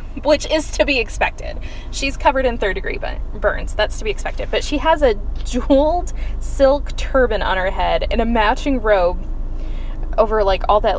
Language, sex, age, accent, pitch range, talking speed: English, female, 10-29, American, 195-300 Hz, 180 wpm